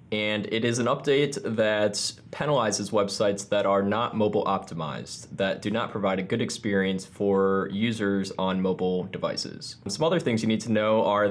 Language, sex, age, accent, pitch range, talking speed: English, male, 20-39, American, 100-115 Hz, 175 wpm